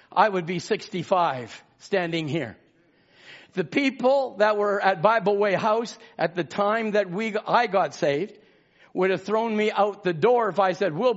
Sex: male